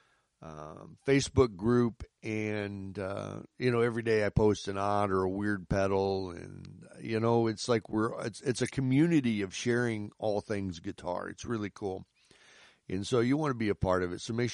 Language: English